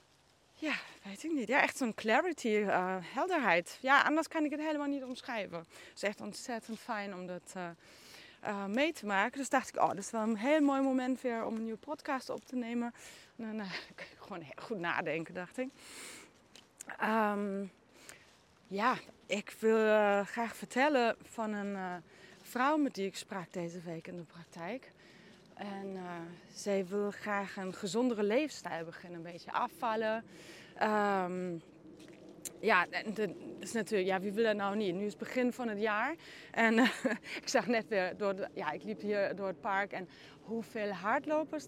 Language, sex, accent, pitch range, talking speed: Dutch, female, Dutch, 195-250 Hz, 180 wpm